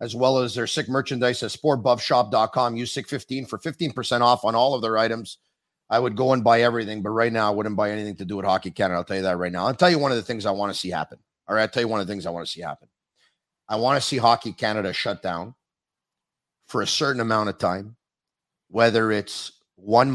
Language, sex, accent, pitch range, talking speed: English, male, American, 105-130 Hz, 255 wpm